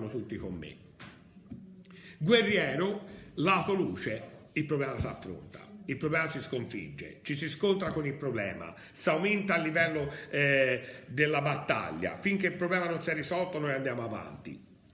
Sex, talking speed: male, 150 wpm